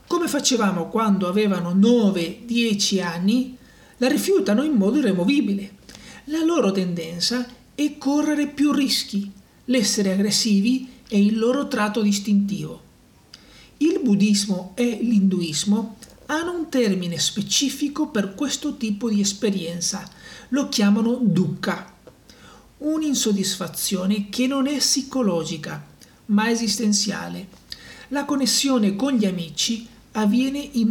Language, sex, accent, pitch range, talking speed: Italian, male, native, 195-255 Hz, 105 wpm